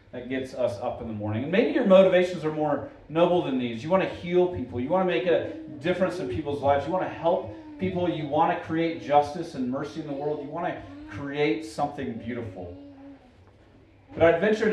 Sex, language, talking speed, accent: male, English, 220 wpm, American